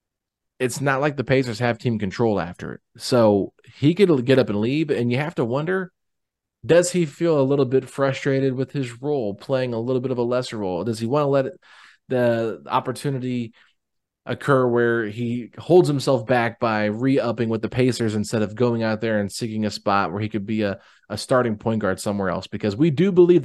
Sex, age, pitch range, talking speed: male, 20-39, 110-135 Hz, 210 wpm